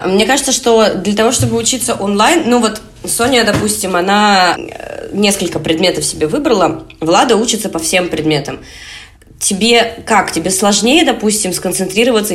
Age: 20-39